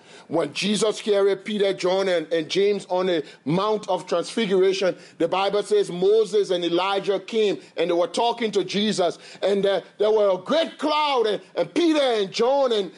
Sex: male